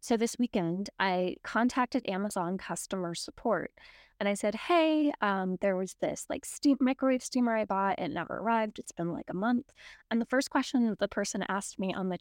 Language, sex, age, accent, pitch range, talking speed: English, female, 10-29, American, 205-265 Hz, 200 wpm